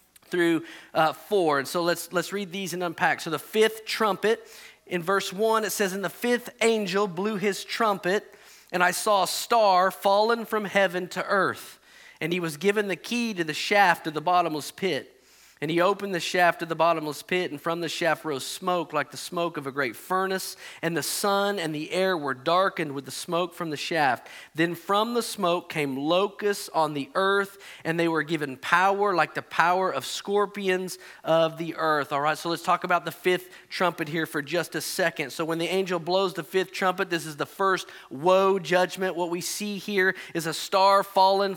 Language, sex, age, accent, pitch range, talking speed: English, male, 40-59, American, 165-200 Hz, 210 wpm